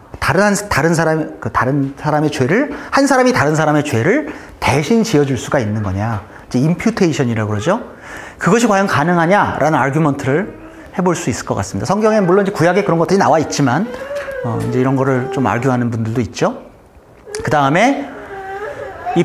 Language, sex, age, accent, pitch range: Korean, male, 40-59, native, 125-200 Hz